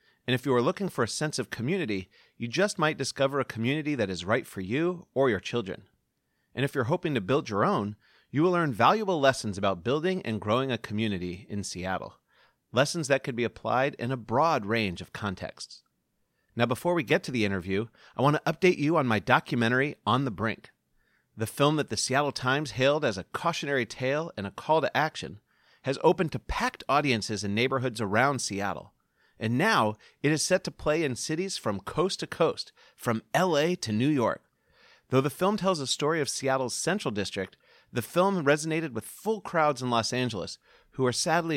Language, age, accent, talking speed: English, 30-49, American, 200 wpm